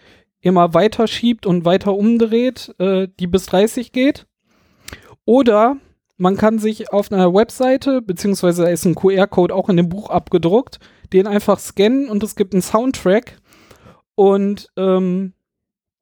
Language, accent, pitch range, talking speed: German, German, 190-245 Hz, 140 wpm